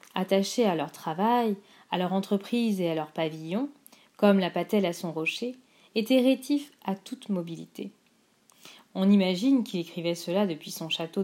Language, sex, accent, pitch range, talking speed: French, female, French, 180-230 Hz, 160 wpm